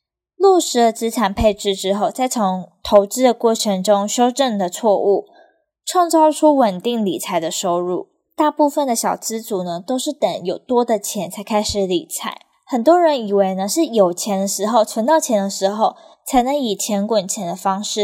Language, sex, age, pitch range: Chinese, female, 10-29, 200-285 Hz